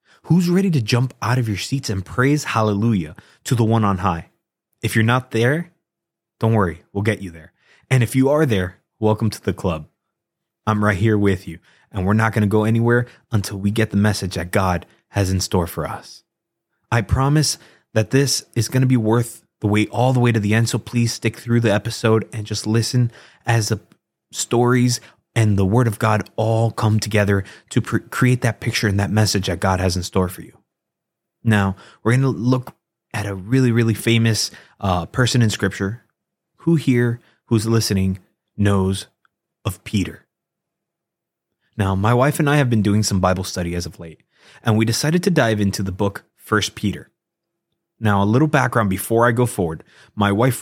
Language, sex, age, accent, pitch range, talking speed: English, male, 20-39, American, 100-120 Hz, 195 wpm